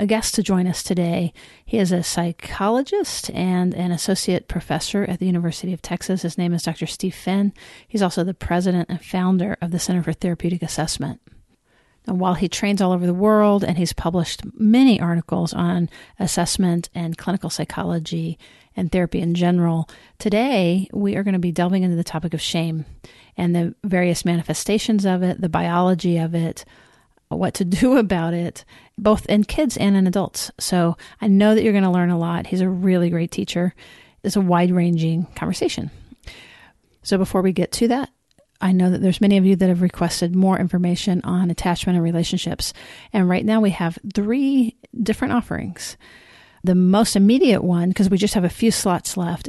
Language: English